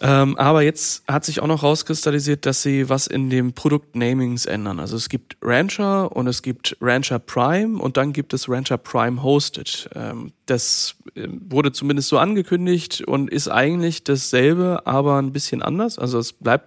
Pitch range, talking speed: 120-150 Hz, 175 wpm